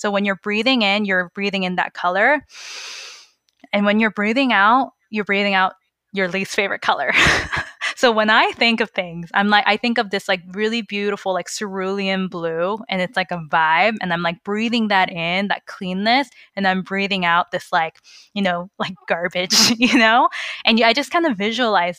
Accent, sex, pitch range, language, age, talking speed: American, female, 185-220 Hz, English, 20-39, 195 wpm